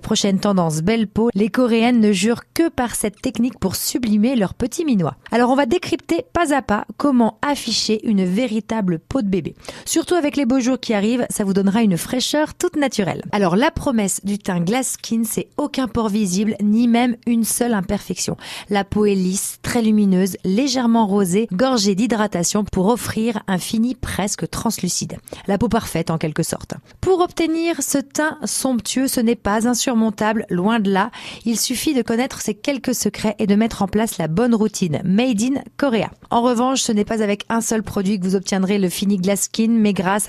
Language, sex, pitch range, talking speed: French, female, 200-250 Hz, 200 wpm